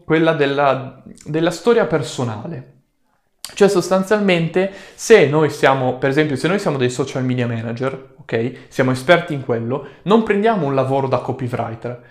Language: Italian